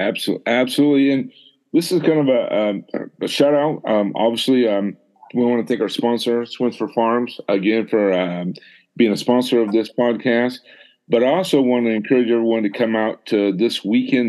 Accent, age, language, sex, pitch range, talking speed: American, 50-69, English, male, 105-125 Hz, 185 wpm